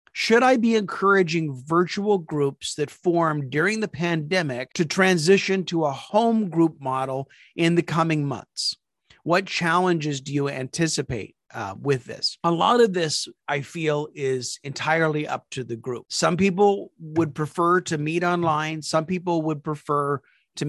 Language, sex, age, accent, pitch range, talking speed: English, male, 30-49, American, 130-165 Hz, 155 wpm